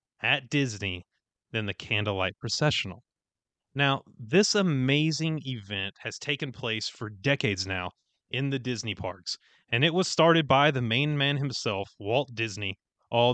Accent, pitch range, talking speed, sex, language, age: American, 110-145 Hz, 145 wpm, male, English, 30-49